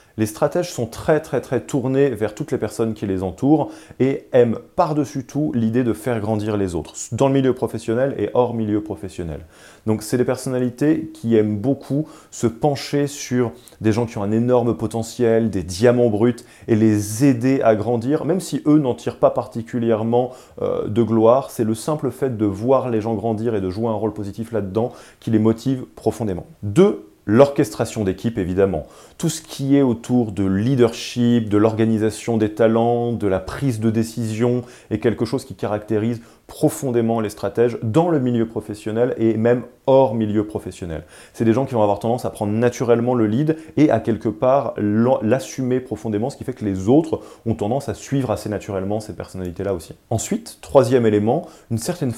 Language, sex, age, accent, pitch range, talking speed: French, male, 30-49, French, 110-130 Hz, 185 wpm